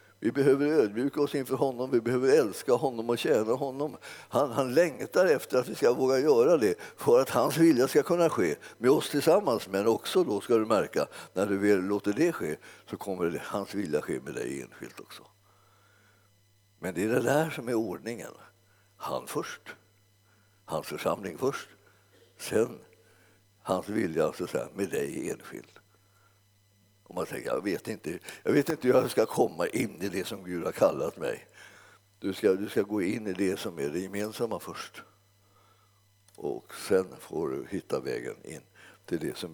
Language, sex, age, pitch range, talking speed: Swedish, male, 60-79, 100-155 Hz, 175 wpm